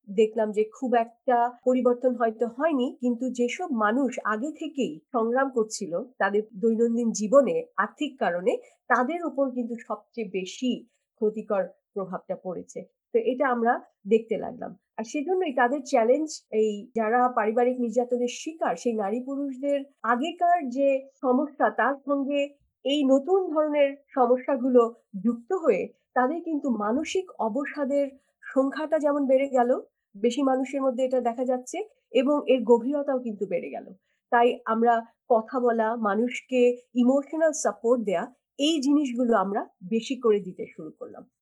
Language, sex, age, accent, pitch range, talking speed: English, female, 50-69, Indian, 230-285 Hz, 120 wpm